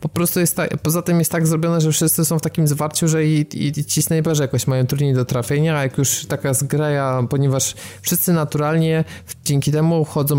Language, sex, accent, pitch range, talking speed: Polish, male, native, 125-150 Hz, 215 wpm